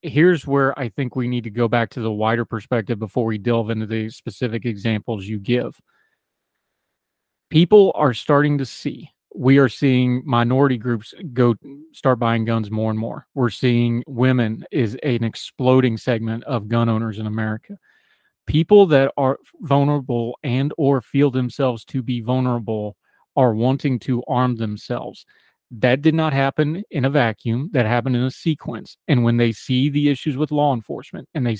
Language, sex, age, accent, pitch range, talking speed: English, male, 30-49, American, 120-140 Hz, 170 wpm